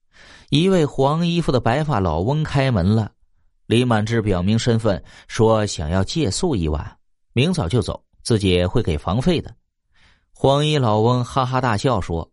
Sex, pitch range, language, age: male, 90-140 Hz, Chinese, 30-49